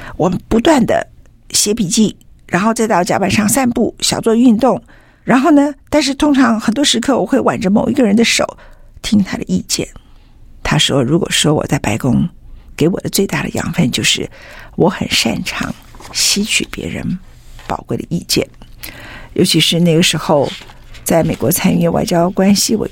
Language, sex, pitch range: Chinese, female, 170-230 Hz